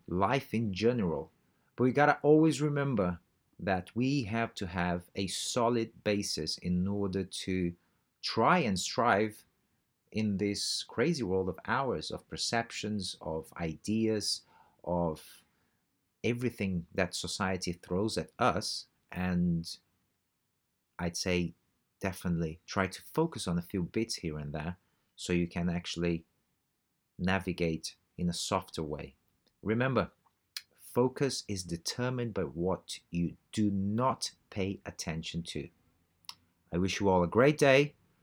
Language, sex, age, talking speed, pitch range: English, male, 30-49, 130 wpm, 85-110 Hz